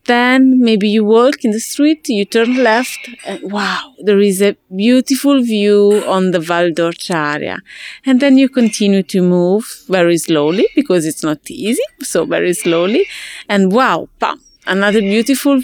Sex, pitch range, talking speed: female, 175-235 Hz, 155 wpm